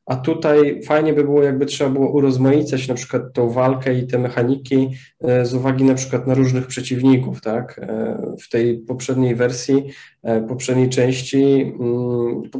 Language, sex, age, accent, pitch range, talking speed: Polish, male, 20-39, native, 120-135 Hz, 150 wpm